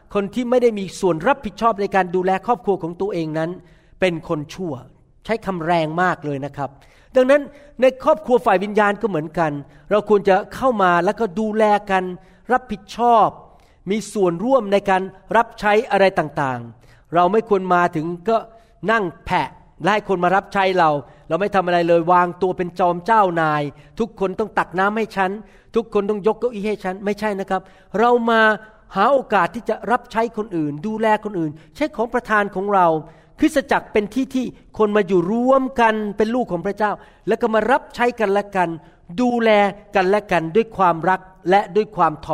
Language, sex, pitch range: Thai, male, 175-225 Hz